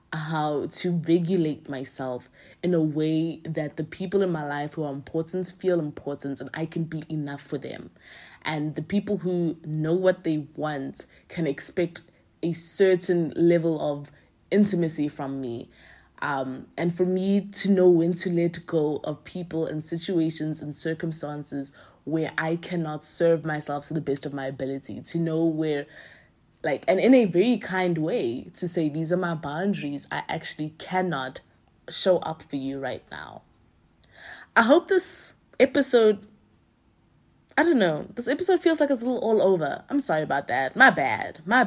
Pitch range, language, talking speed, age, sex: 150-190 Hz, English, 170 wpm, 20-39, female